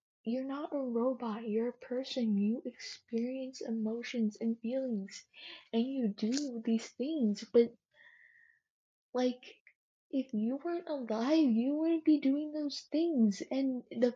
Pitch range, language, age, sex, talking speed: 220-275 Hz, English, 10-29, female, 130 wpm